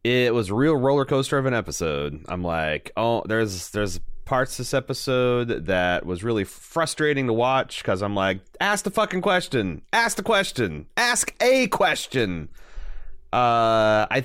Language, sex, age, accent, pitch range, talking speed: English, male, 30-49, American, 95-140 Hz, 155 wpm